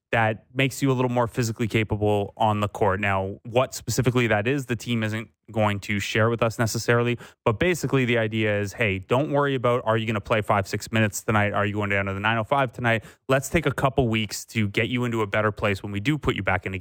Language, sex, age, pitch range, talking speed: English, male, 20-39, 105-125 Hz, 250 wpm